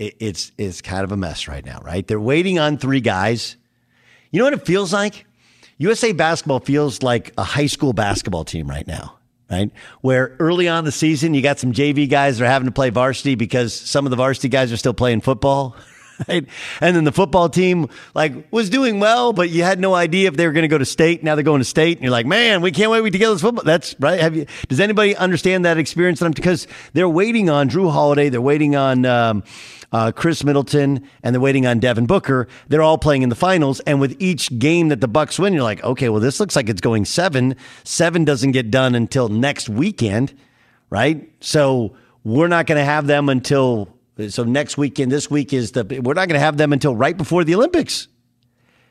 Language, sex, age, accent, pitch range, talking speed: English, male, 50-69, American, 120-160 Hz, 225 wpm